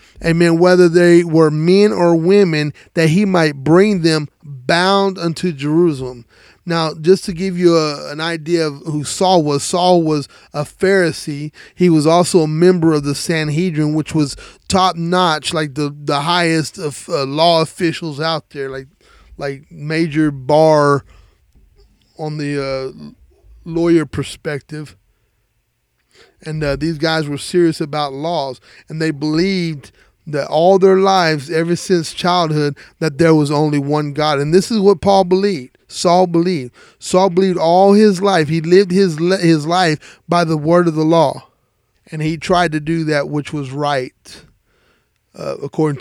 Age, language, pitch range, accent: 30-49, English, 150-175 Hz, American